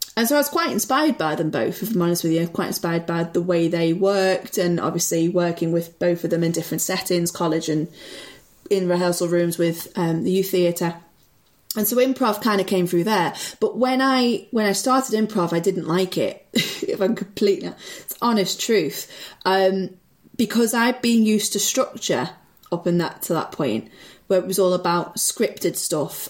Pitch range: 170-205 Hz